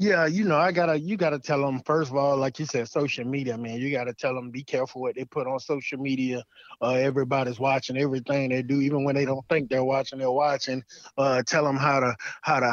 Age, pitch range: 20-39, 140-175 Hz